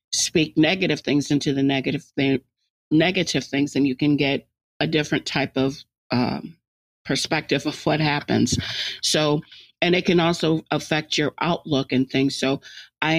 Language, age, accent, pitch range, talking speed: English, 40-59, American, 140-155 Hz, 155 wpm